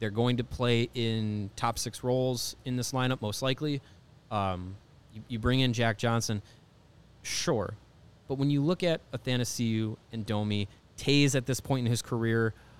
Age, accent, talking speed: 30-49, American, 170 wpm